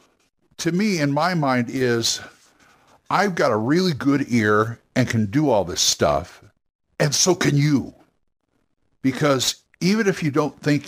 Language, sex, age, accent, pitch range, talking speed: English, male, 60-79, American, 110-145 Hz, 155 wpm